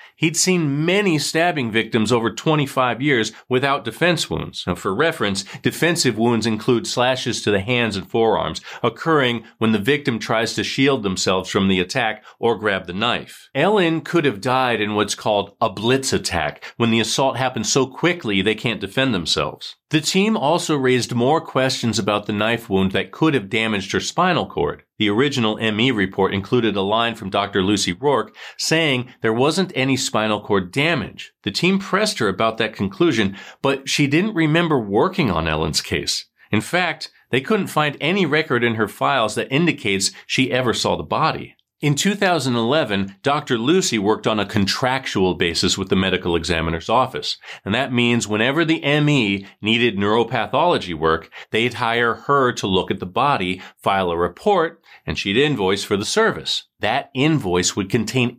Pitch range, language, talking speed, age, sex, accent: 105-140 Hz, English, 175 wpm, 40-59, male, American